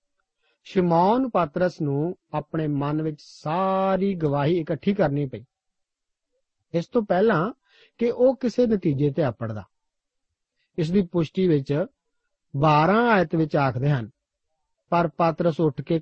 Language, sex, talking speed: Punjabi, male, 65 wpm